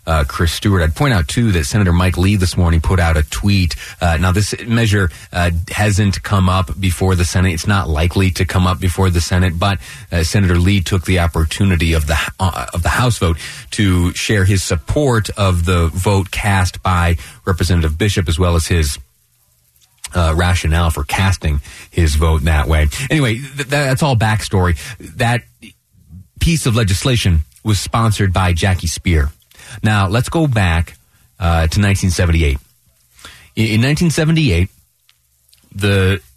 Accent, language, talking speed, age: American, English, 165 wpm, 30-49